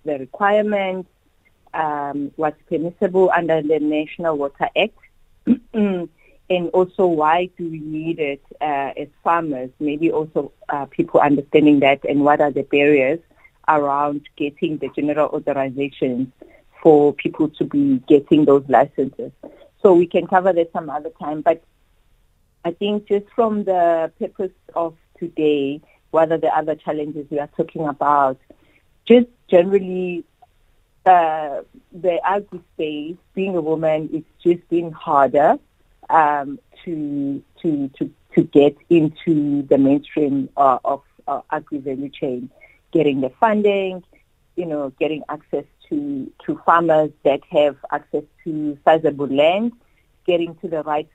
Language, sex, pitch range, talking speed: English, female, 145-185 Hz, 135 wpm